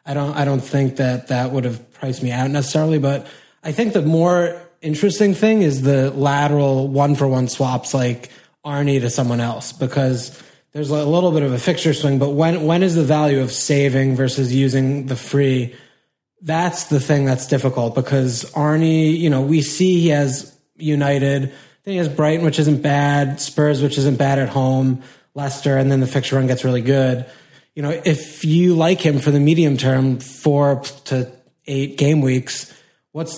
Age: 20-39